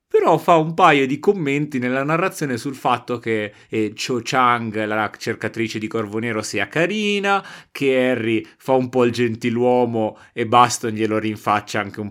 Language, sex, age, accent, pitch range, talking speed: Italian, male, 30-49, native, 110-145 Hz, 170 wpm